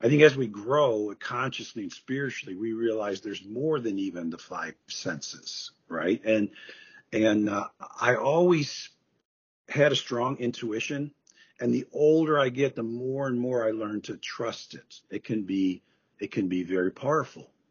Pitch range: 105-150 Hz